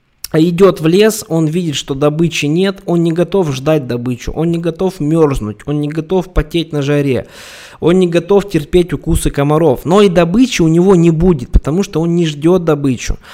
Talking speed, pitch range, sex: 190 wpm, 140-170 Hz, male